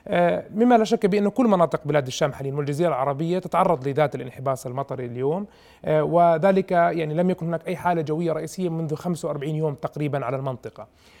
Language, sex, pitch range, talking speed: Arabic, male, 150-195 Hz, 165 wpm